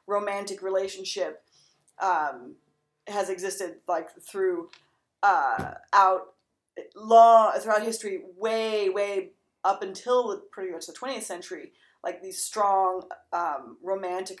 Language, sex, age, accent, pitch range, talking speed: English, female, 30-49, American, 180-230 Hz, 110 wpm